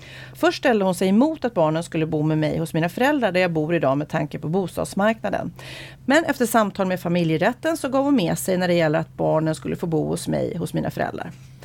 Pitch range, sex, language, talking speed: 170-235 Hz, female, Swedish, 230 wpm